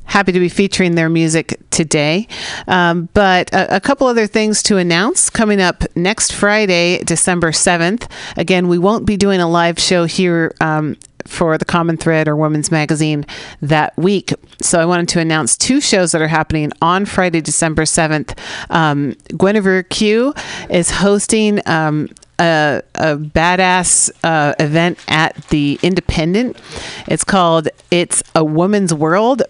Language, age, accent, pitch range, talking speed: English, 40-59, American, 160-190 Hz, 155 wpm